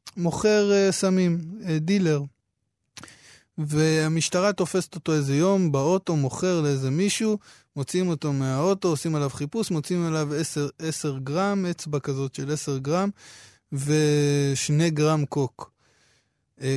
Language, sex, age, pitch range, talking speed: Hebrew, male, 20-39, 140-185 Hz, 120 wpm